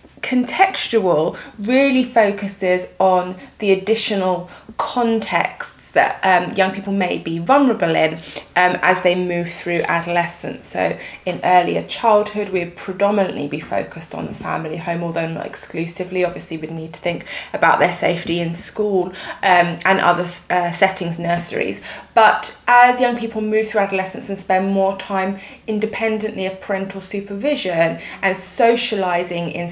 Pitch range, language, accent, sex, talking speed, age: 175-205 Hz, English, British, female, 145 wpm, 20-39